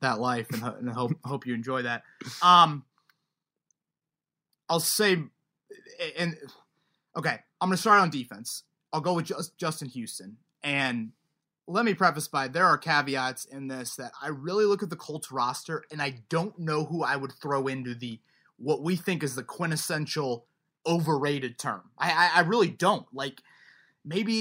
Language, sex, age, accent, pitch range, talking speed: English, male, 30-49, American, 135-180 Hz, 170 wpm